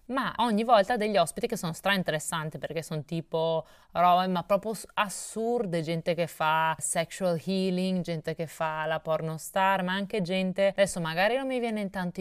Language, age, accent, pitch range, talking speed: Italian, 30-49, native, 165-190 Hz, 175 wpm